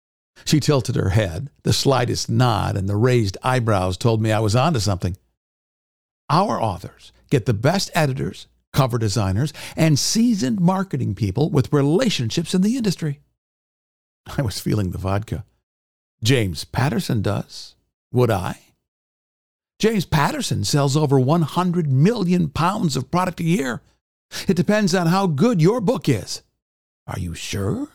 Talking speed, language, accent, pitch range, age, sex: 145 wpm, English, American, 105-160 Hz, 60-79, male